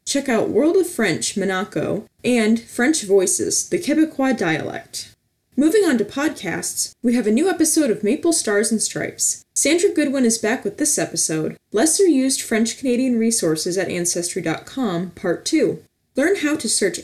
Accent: American